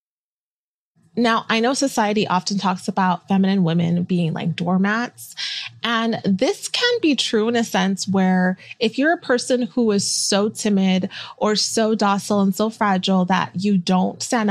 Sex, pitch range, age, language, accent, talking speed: female, 190-225 Hz, 20-39, English, American, 160 wpm